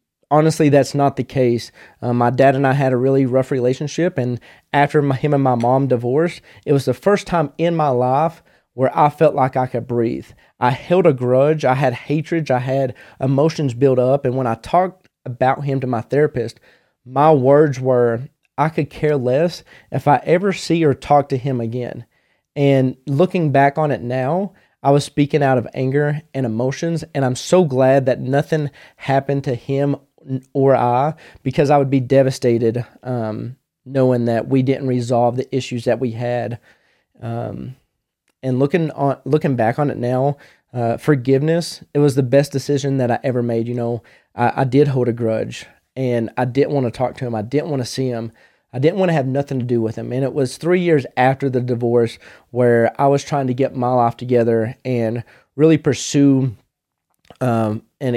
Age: 30-49